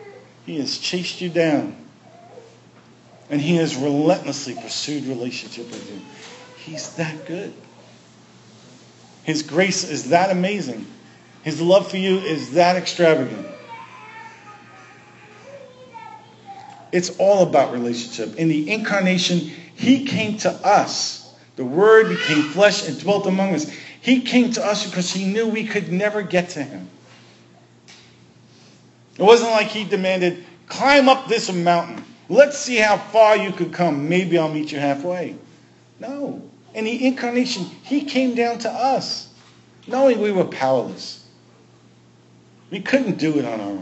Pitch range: 145-220 Hz